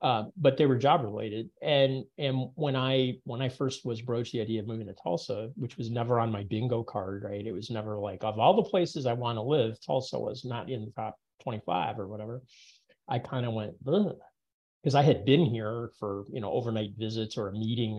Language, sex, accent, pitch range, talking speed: English, male, American, 110-130 Hz, 225 wpm